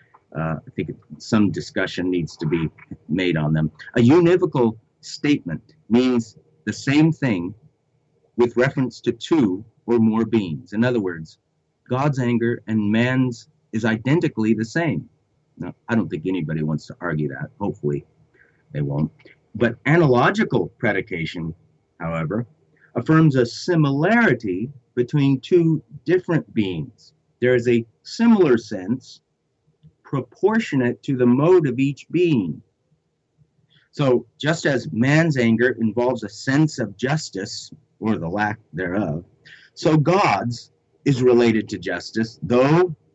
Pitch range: 110-150 Hz